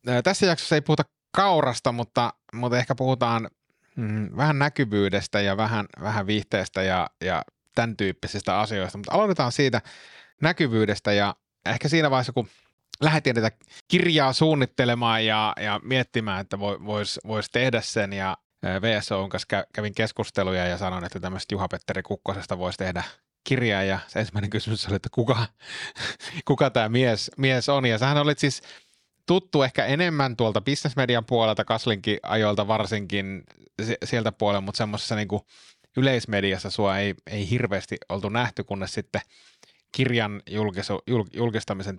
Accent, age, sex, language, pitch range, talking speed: native, 30-49, male, Finnish, 100-125 Hz, 140 wpm